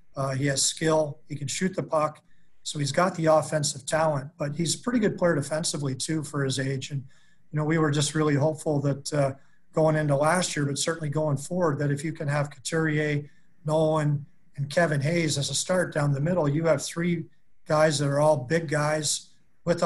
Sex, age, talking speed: male, 40-59, 210 wpm